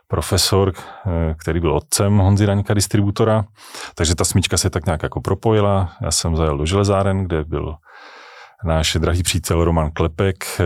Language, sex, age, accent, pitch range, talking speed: Czech, male, 30-49, native, 80-95 Hz, 150 wpm